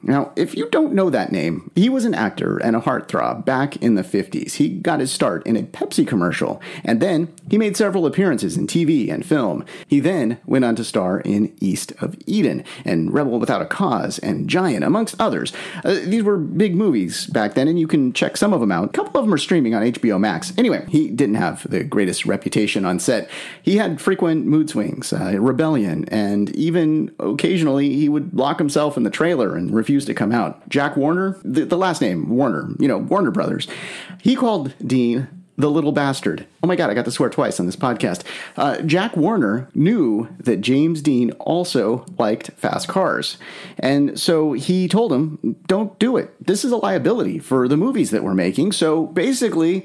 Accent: American